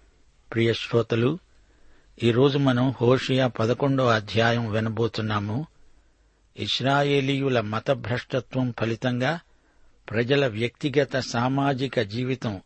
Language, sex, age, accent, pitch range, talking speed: Telugu, male, 60-79, native, 105-130 Hz, 75 wpm